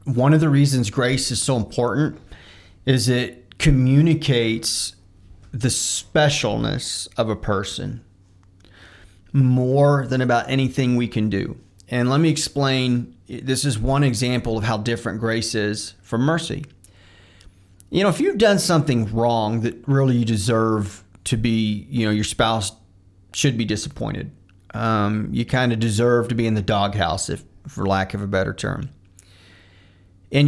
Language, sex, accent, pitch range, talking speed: English, male, American, 95-135 Hz, 150 wpm